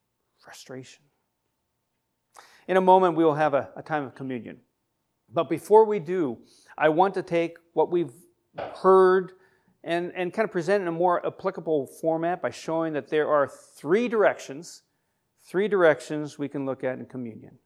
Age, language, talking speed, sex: 40-59, English, 165 wpm, male